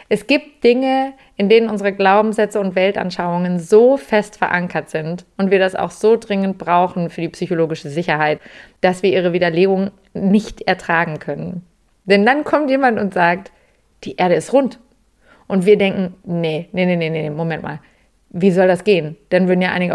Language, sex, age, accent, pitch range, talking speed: German, female, 30-49, German, 180-215 Hz, 175 wpm